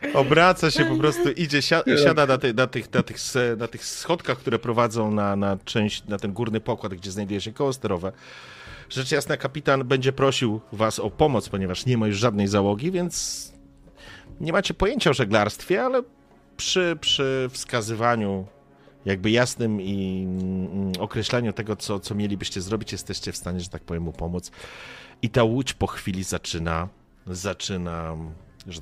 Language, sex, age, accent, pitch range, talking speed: Polish, male, 40-59, native, 95-140 Hz, 150 wpm